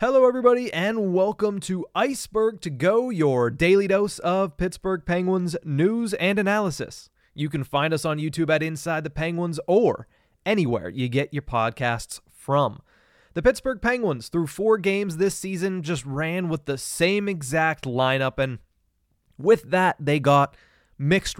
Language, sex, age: English, male, 20-39